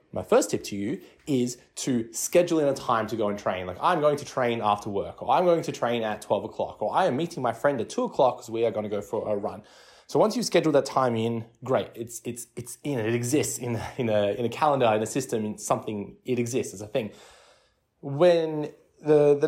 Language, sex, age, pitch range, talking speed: English, male, 20-39, 110-140 Hz, 250 wpm